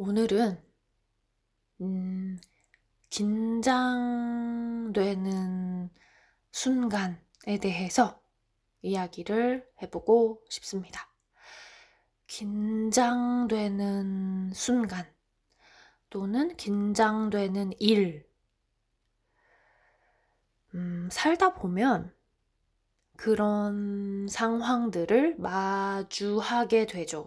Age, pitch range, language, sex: 20-39, 180-225 Hz, Korean, female